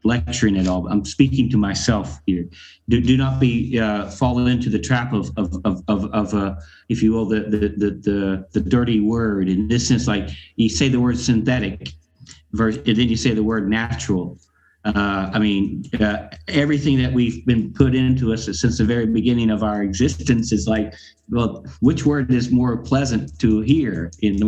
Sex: male